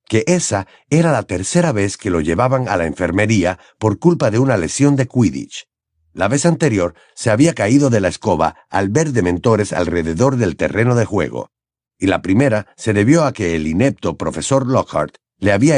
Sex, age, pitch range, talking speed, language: male, 50-69, 100-140 Hz, 185 wpm, Spanish